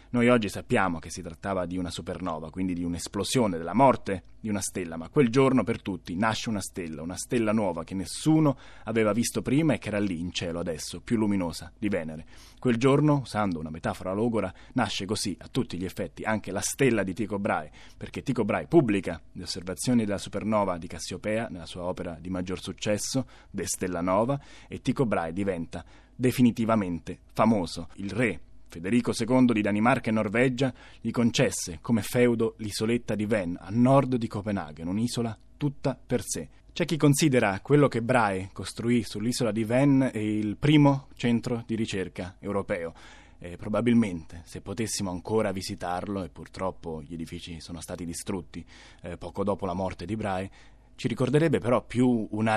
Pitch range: 90-120 Hz